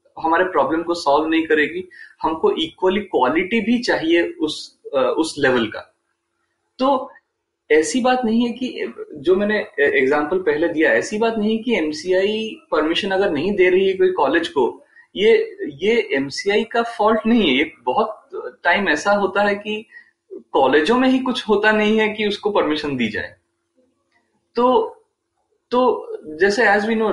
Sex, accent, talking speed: male, native, 160 wpm